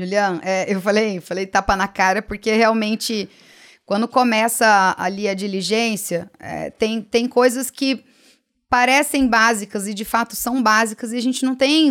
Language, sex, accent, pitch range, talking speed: Portuguese, female, Brazilian, 220-300 Hz, 150 wpm